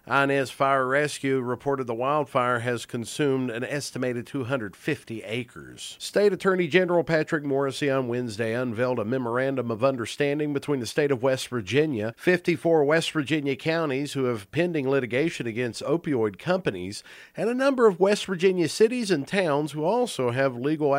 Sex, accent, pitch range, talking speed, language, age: male, American, 125-165 Hz, 155 wpm, English, 50-69